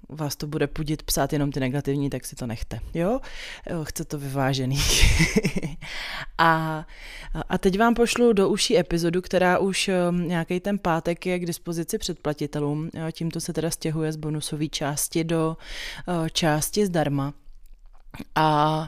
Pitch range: 150-170 Hz